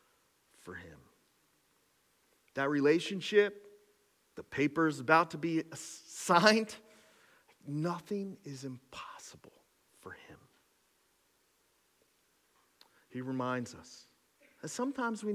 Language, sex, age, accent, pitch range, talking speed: English, male, 50-69, American, 120-175 Hz, 80 wpm